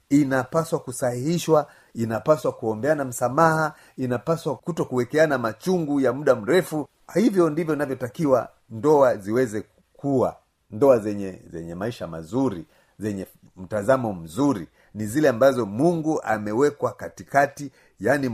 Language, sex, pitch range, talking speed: Swahili, male, 105-145 Hz, 110 wpm